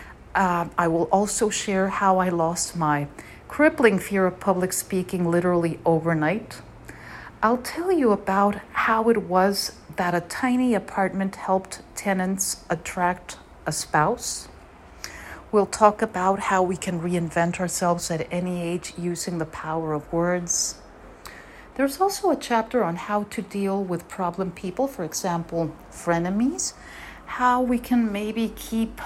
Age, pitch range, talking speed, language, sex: 50-69, 165-210 Hz, 140 wpm, English, female